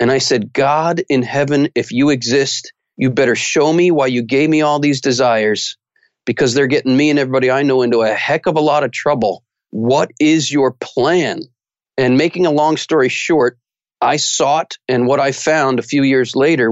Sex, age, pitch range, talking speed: male, 40-59, 130-180 Hz, 200 wpm